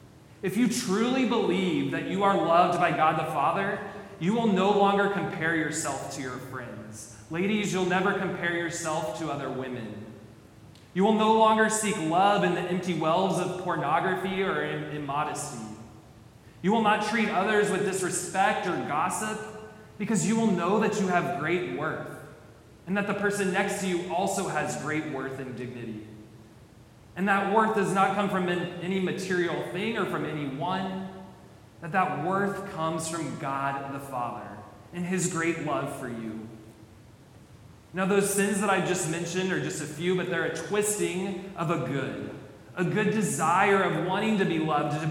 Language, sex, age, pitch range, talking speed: English, male, 20-39, 140-195 Hz, 170 wpm